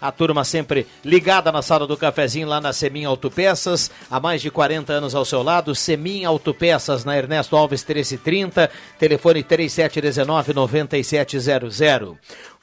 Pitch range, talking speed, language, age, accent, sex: 145-175 Hz, 135 wpm, Portuguese, 60-79, Brazilian, male